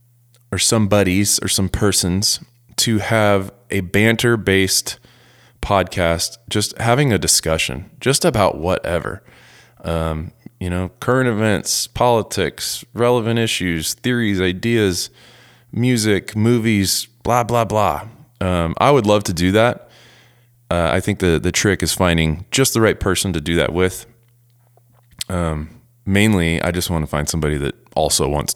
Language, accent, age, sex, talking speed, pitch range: English, American, 20-39, male, 145 wpm, 85-120 Hz